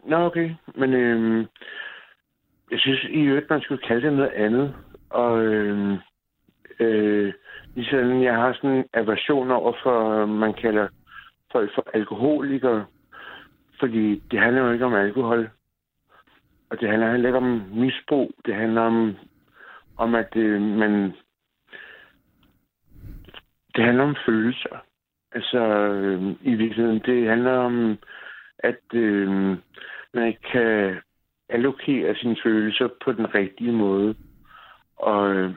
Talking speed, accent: 125 wpm, native